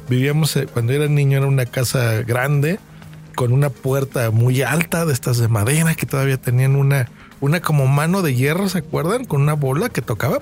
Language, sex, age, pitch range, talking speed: Spanish, male, 40-59, 120-150 Hz, 190 wpm